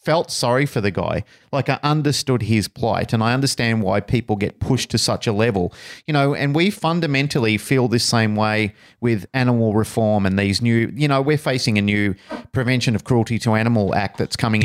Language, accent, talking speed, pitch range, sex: English, Australian, 205 wpm, 105-135 Hz, male